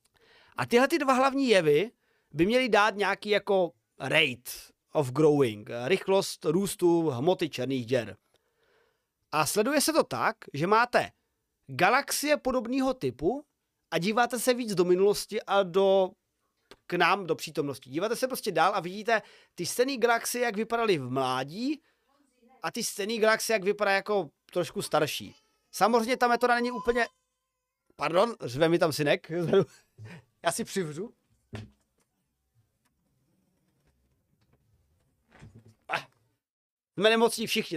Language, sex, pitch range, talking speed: Czech, male, 160-250 Hz, 125 wpm